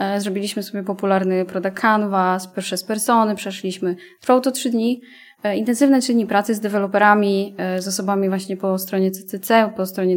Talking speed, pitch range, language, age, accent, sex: 160 wpm, 195-235 Hz, Polish, 10-29, native, female